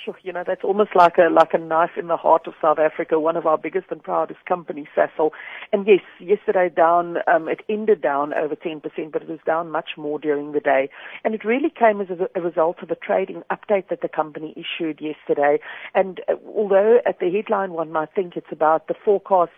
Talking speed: 225 wpm